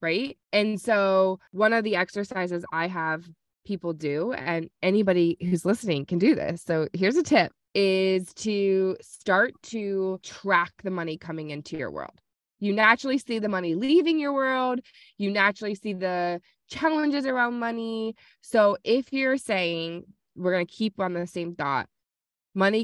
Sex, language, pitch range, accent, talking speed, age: female, English, 175-225 Hz, American, 160 wpm, 20-39